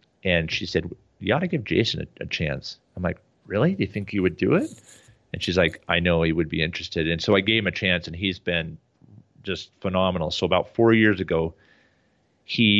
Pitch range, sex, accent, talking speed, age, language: 80-95 Hz, male, American, 225 wpm, 30-49, English